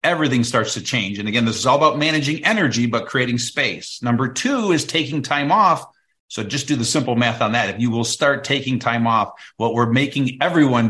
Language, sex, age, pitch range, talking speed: English, male, 50-69, 120-155 Hz, 220 wpm